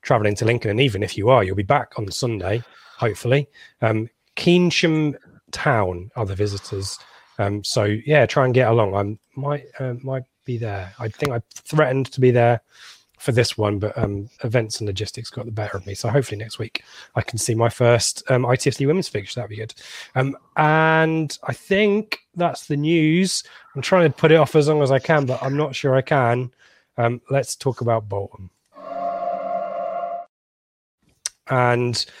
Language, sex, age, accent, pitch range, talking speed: English, male, 20-39, British, 110-140 Hz, 185 wpm